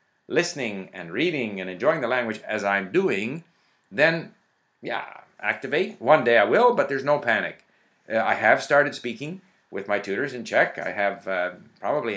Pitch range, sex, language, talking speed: 105-165 Hz, male, English, 175 wpm